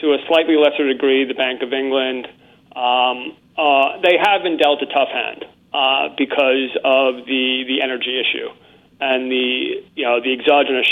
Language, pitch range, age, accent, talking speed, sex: English, 130-155 Hz, 40-59, American, 165 wpm, male